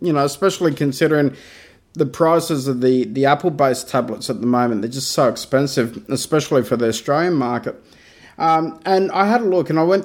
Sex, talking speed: male, 190 wpm